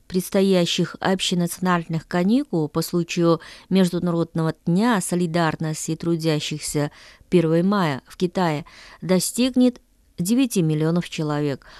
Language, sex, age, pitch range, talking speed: Russian, female, 20-39, 165-225 Hz, 85 wpm